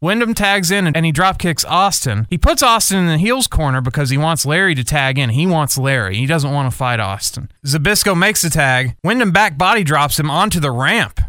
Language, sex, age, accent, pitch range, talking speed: English, male, 30-49, American, 130-180 Hz, 225 wpm